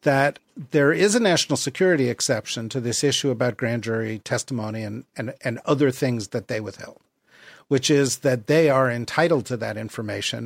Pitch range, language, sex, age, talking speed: 120-145 Hz, English, male, 50-69, 180 wpm